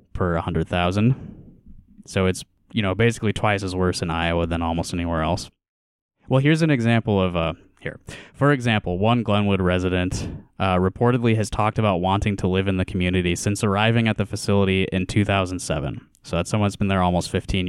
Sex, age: male, 20-39